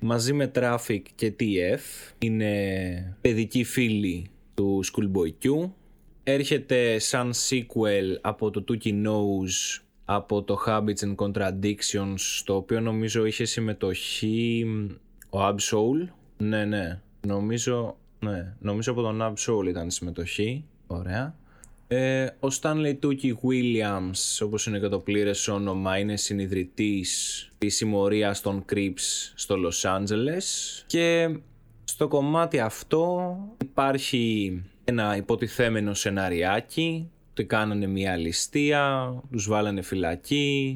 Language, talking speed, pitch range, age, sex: Greek, 110 wpm, 100-125 Hz, 20-39, male